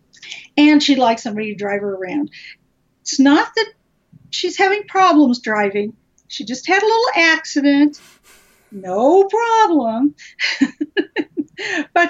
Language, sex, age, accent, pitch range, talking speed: English, female, 50-69, American, 225-300 Hz, 120 wpm